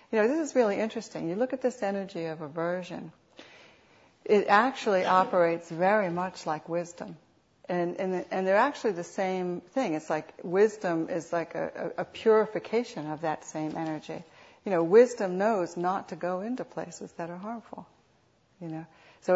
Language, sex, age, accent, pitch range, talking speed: English, female, 60-79, American, 170-225 Hz, 175 wpm